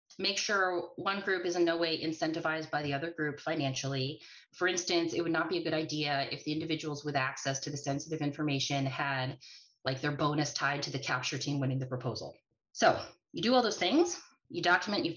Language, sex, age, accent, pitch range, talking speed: English, female, 30-49, American, 140-180 Hz, 210 wpm